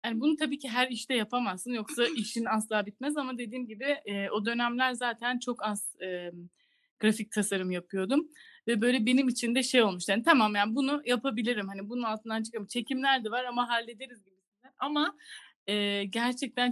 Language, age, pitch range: Turkish, 30-49, 215-275 Hz